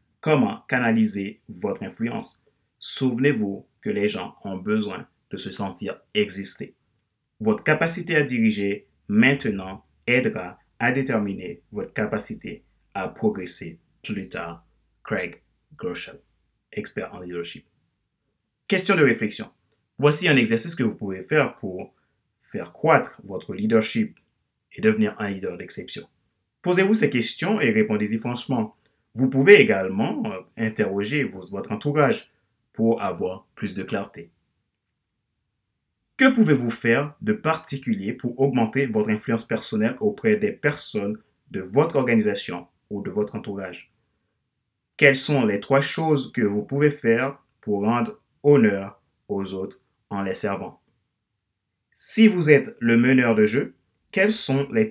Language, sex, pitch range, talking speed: French, male, 105-160 Hz, 130 wpm